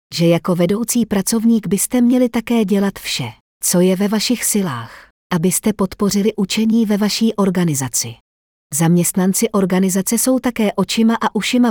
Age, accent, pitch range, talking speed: 40-59, native, 170-220 Hz, 140 wpm